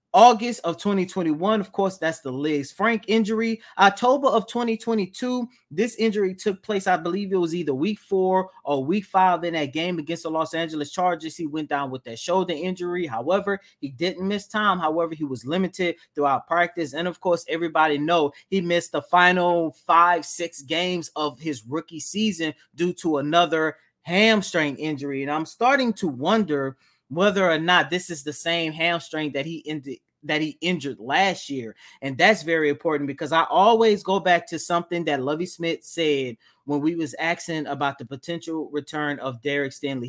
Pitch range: 145-180 Hz